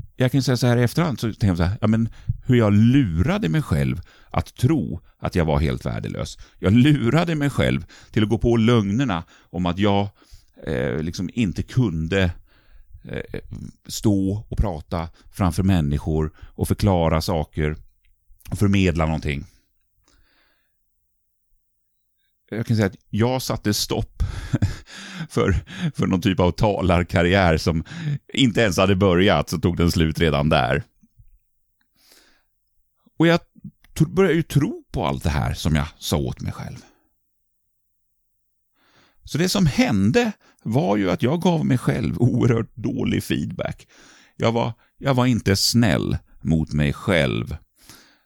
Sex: male